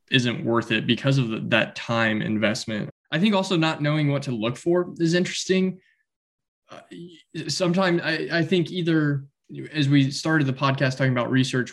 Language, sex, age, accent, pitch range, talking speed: English, male, 10-29, American, 120-150 Hz, 170 wpm